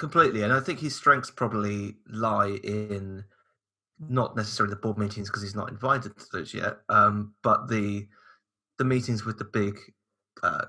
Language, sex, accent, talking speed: English, male, British, 170 wpm